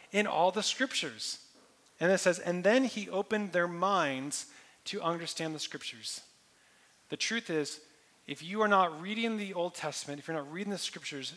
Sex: male